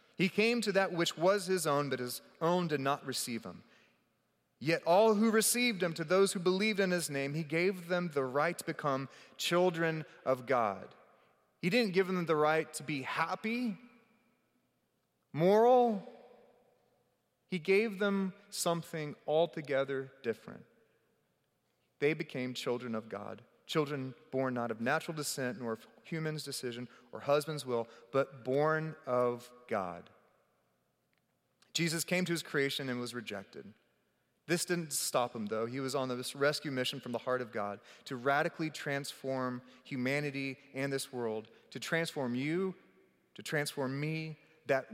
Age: 30-49